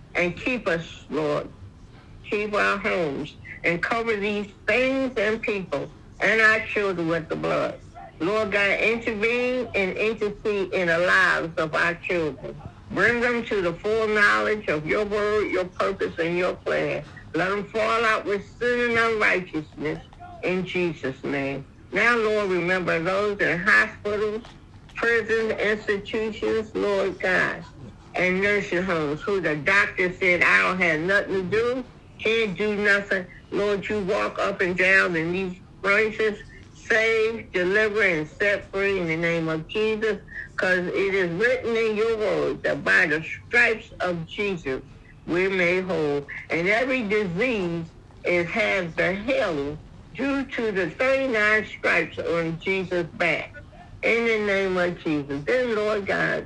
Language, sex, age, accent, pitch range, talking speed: English, female, 60-79, American, 170-215 Hz, 150 wpm